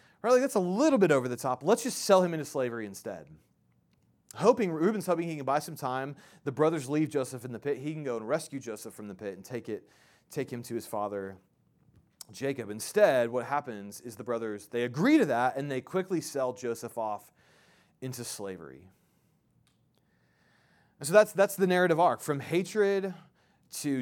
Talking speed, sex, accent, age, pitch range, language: 190 wpm, male, American, 30-49, 110-165 Hz, English